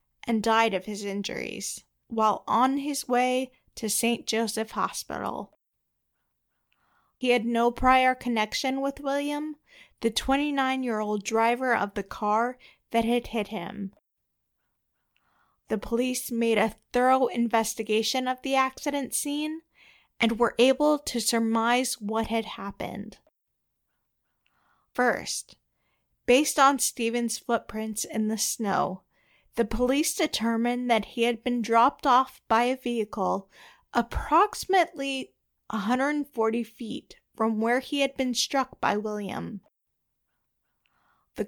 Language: English